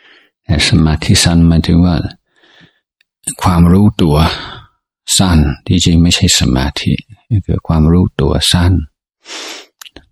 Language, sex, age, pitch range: Thai, male, 60-79, 80-95 Hz